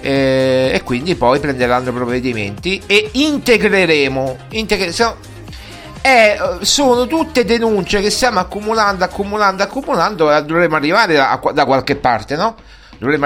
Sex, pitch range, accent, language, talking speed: male, 130-185 Hz, native, Italian, 105 wpm